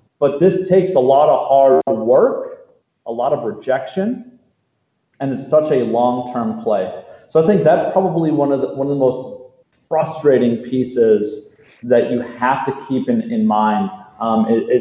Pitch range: 130-195 Hz